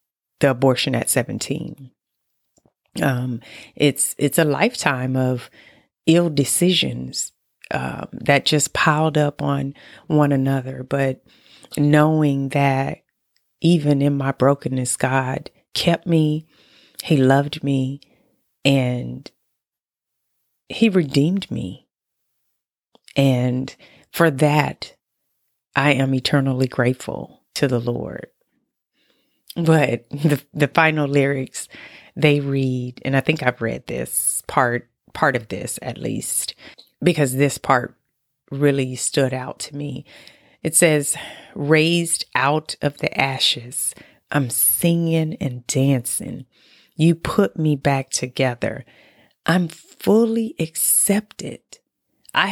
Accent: American